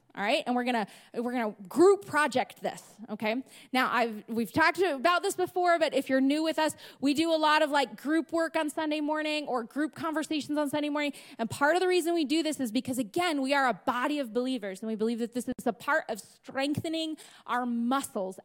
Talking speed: 230 wpm